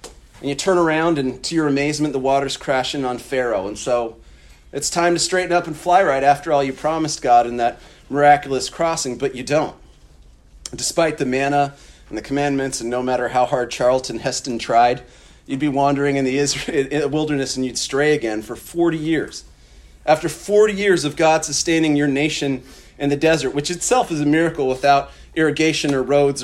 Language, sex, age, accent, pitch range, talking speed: English, male, 40-59, American, 130-160 Hz, 185 wpm